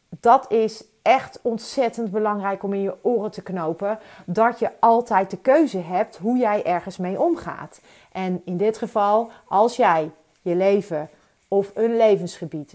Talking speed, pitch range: 155 wpm, 180-225 Hz